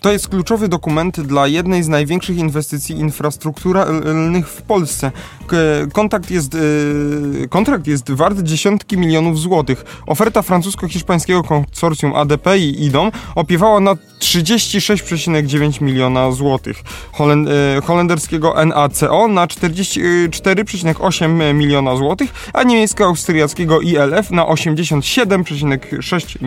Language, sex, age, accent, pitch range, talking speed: Polish, male, 20-39, native, 150-185 Hz, 95 wpm